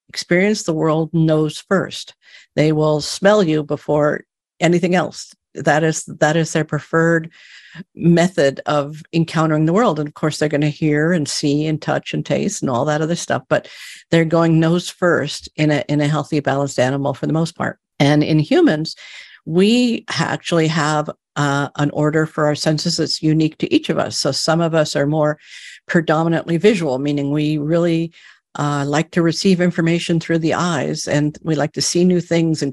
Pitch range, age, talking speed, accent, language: 150-170 Hz, 50-69, 185 wpm, American, English